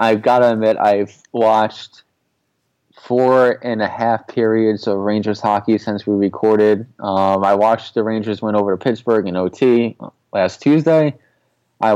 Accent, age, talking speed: American, 20-39, 155 wpm